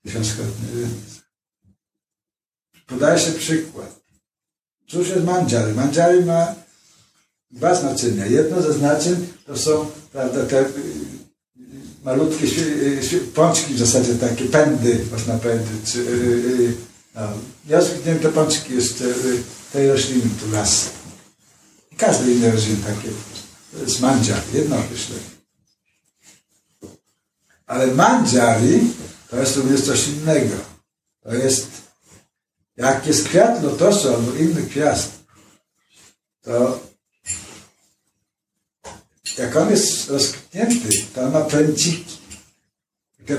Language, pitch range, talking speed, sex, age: Polish, 120-160 Hz, 100 wpm, male, 60-79